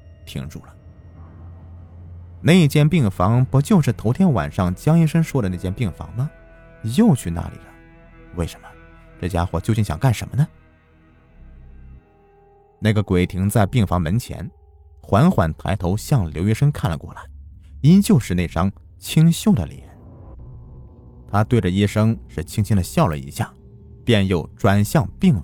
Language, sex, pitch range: Chinese, male, 85-120 Hz